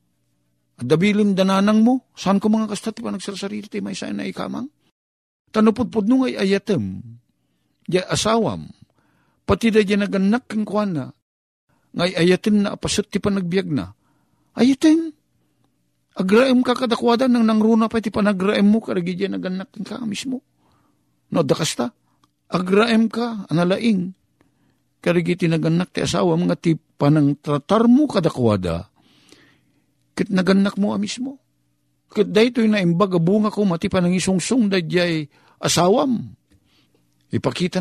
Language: Filipino